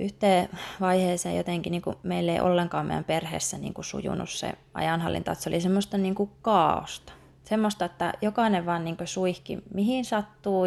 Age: 20-39